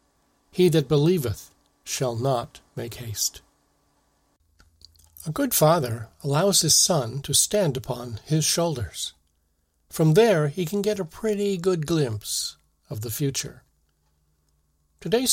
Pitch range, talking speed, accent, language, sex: 115-160 Hz, 120 wpm, American, English, male